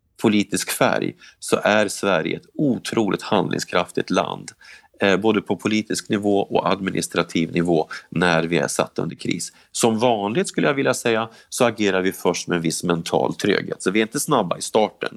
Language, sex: Swedish, male